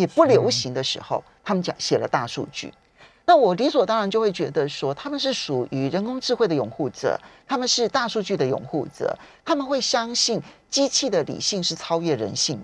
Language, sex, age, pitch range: Chinese, male, 40-59, 165-275 Hz